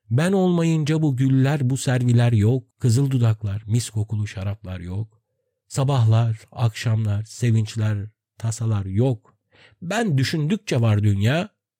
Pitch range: 115-150 Hz